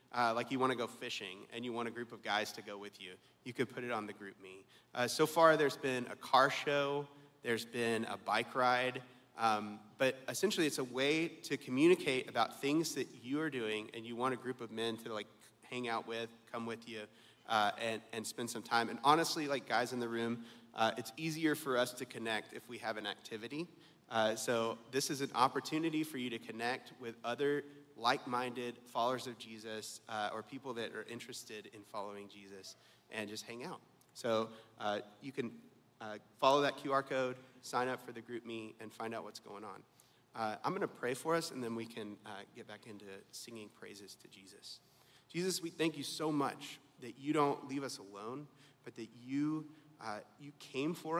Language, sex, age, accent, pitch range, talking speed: English, male, 30-49, American, 110-140 Hz, 210 wpm